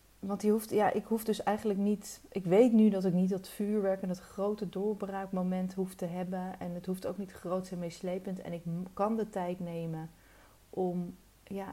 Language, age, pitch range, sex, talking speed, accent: Dutch, 30-49, 170-200 Hz, female, 205 wpm, Dutch